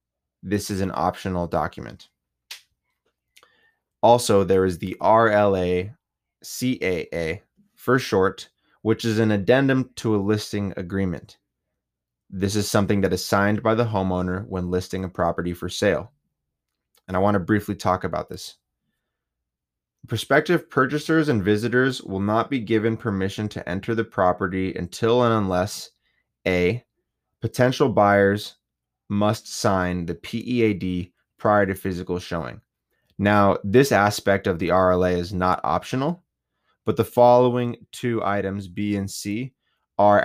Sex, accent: male, American